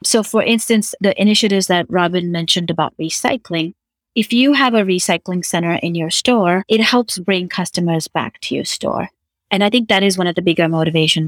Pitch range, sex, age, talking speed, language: 170-210 Hz, female, 30-49, 195 wpm, English